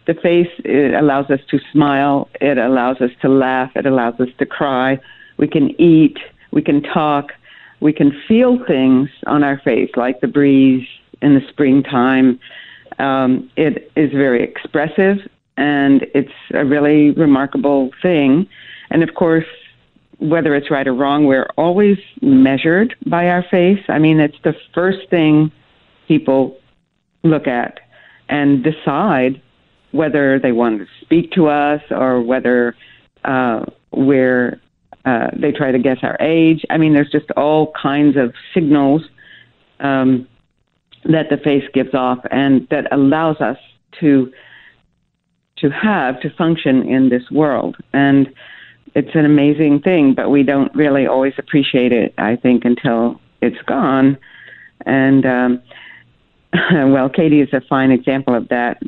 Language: English